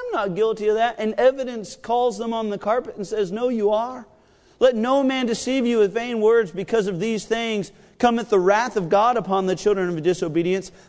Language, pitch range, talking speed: English, 190-250 Hz, 215 wpm